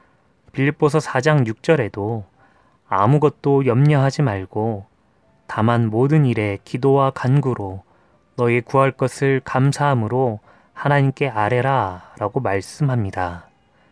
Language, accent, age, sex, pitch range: Korean, native, 20-39, male, 110-140 Hz